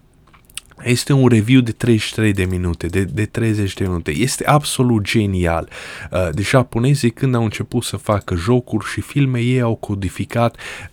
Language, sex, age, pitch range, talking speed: Romanian, male, 20-39, 95-120 Hz, 155 wpm